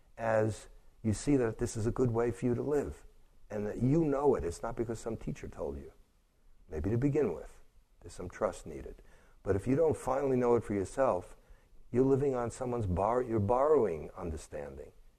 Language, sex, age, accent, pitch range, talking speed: English, male, 60-79, American, 100-125 Hz, 190 wpm